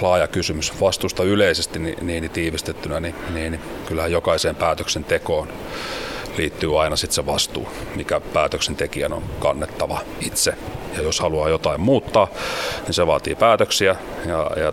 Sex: male